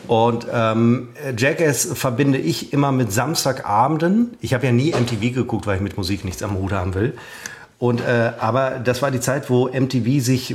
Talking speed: 190 wpm